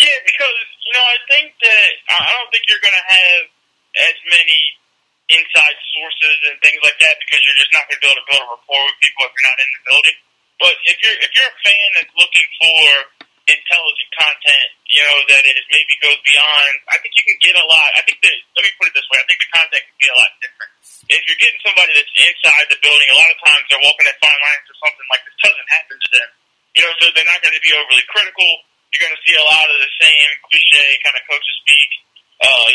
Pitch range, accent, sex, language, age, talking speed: 140-185 Hz, American, male, English, 30-49, 250 wpm